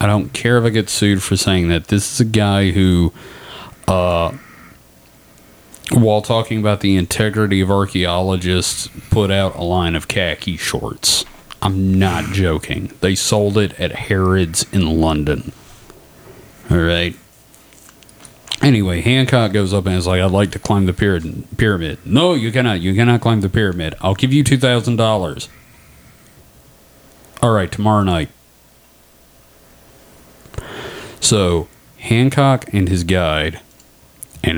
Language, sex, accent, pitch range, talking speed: English, male, American, 85-110 Hz, 135 wpm